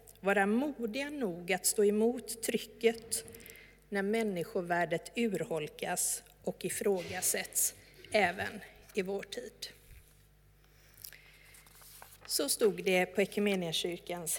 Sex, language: female, Swedish